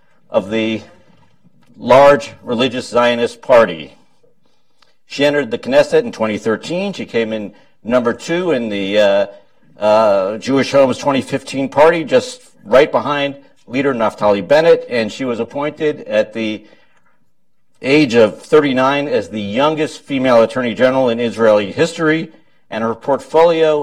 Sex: male